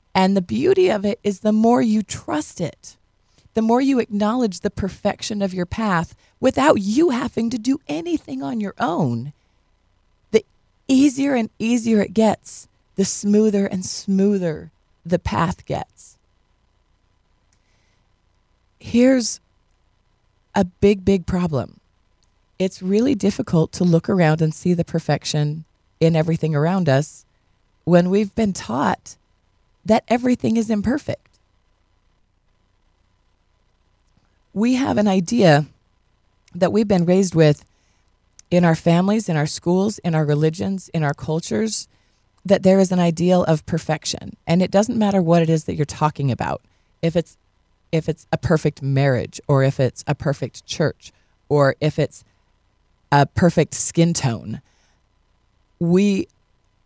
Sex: female